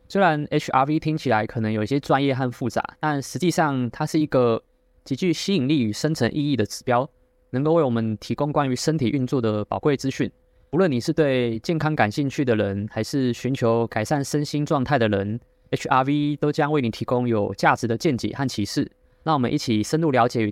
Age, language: 20-39, Chinese